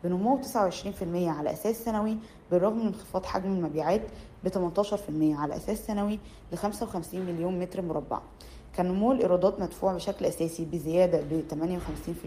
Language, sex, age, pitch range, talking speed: Arabic, female, 20-39, 170-205 Hz, 135 wpm